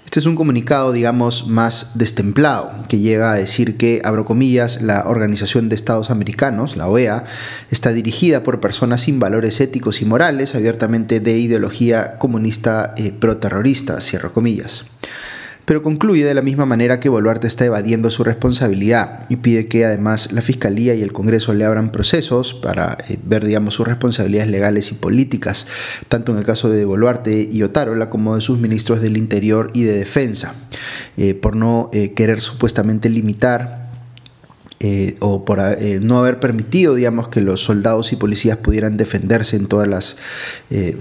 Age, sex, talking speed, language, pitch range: 30-49, male, 165 wpm, Spanish, 110-125 Hz